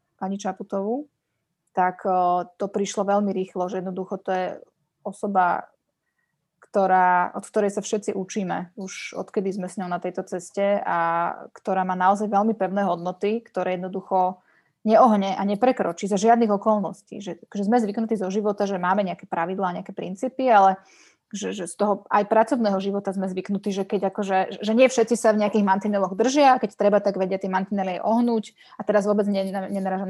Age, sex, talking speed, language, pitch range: 20-39, female, 170 wpm, Slovak, 190-215 Hz